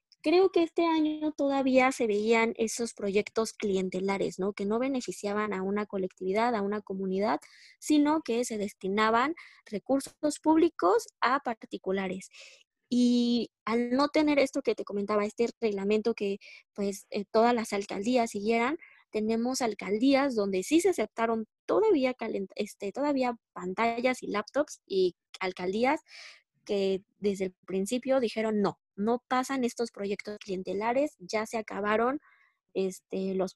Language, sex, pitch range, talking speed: Spanish, female, 205-260 Hz, 130 wpm